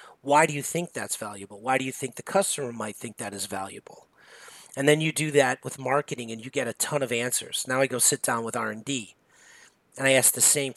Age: 40-59